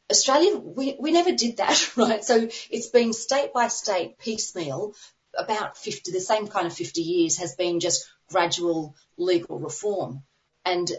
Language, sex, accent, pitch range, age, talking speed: English, female, Australian, 160-225 Hz, 30-49, 160 wpm